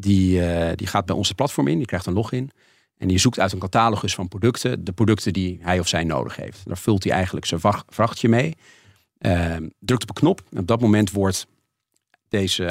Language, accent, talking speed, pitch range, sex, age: Dutch, Dutch, 215 wpm, 90-115 Hz, male, 40-59